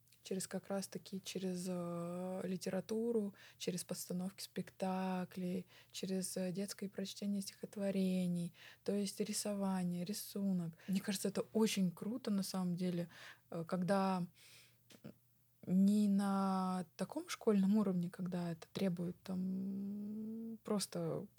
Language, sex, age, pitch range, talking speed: Russian, female, 20-39, 185-210 Hz, 100 wpm